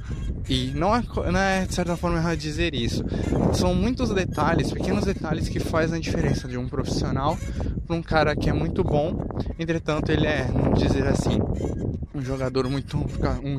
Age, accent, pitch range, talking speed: 20-39, Brazilian, 120-155 Hz, 170 wpm